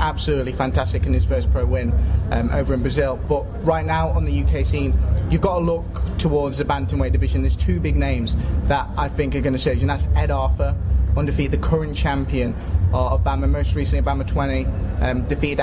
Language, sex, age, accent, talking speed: English, male, 20-39, British, 205 wpm